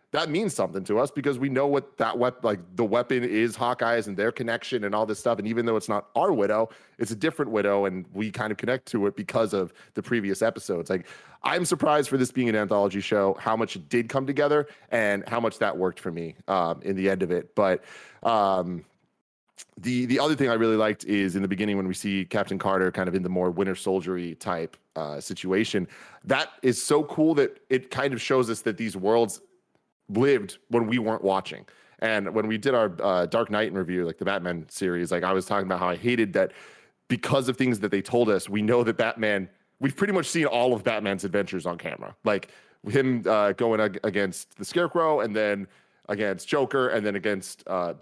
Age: 30-49